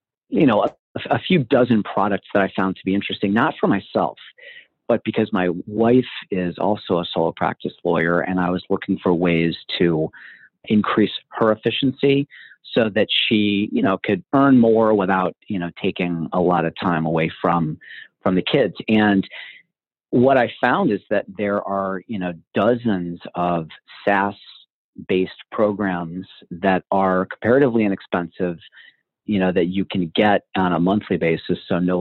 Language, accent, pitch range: English, American, 90-105 Hz